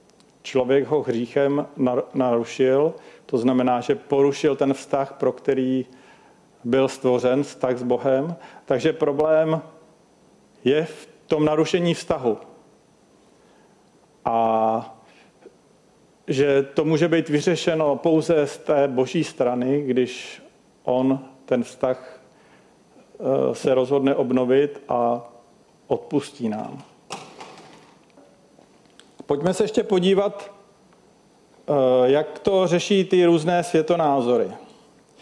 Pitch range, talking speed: 130-165 Hz, 95 wpm